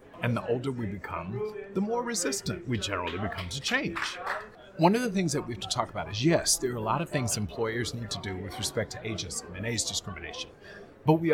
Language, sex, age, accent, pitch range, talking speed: English, male, 30-49, American, 105-135 Hz, 235 wpm